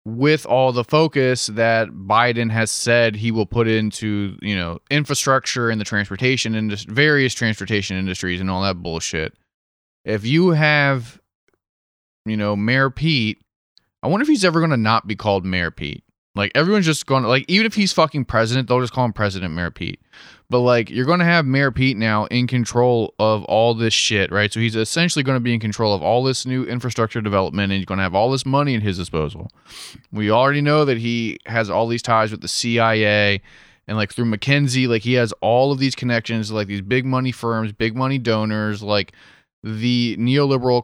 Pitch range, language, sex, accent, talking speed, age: 105-130 Hz, English, male, American, 200 wpm, 20-39